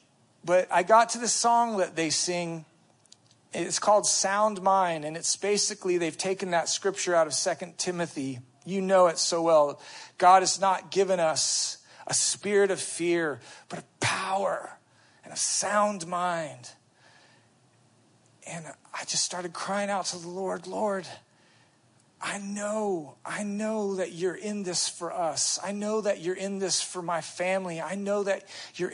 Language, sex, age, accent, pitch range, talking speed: English, male, 40-59, American, 155-200 Hz, 160 wpm